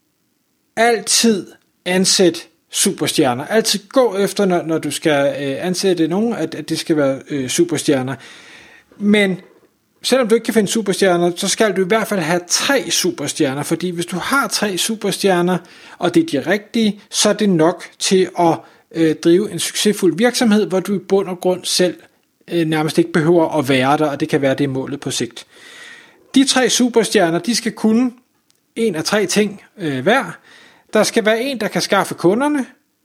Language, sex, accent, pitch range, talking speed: Danish, male, native, 165-220 Hz, 170 wpm